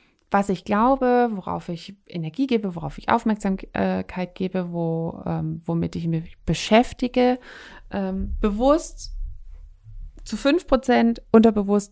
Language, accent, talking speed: German, German, 115 wpm